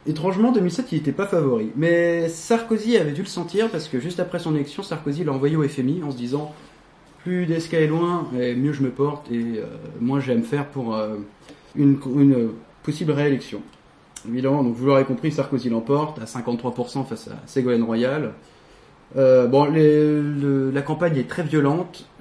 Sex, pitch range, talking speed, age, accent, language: male, 125-160 Hz, 190 wpm, 30-49, French, French